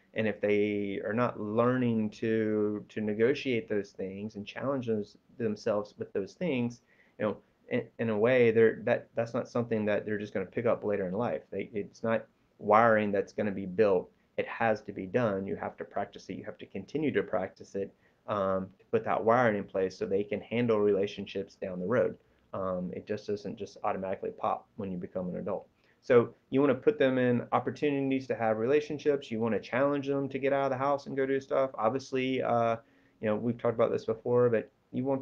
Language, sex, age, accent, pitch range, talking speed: English, male, 30-49, American, 105-125 Hz, 220 wpm